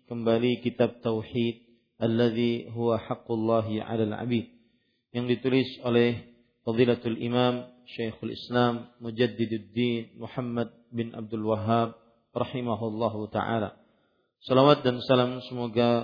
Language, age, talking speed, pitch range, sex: Malay, 40-59, 95 wpm, 115-125 Hz, male